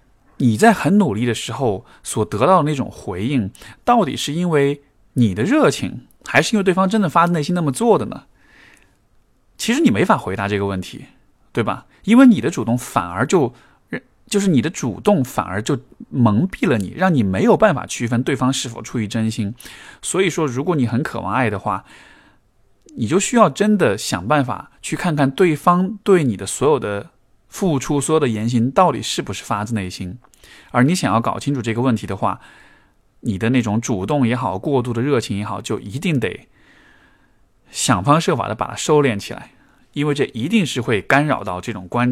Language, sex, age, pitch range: Chinese, male, 20-39, 100-150 Hz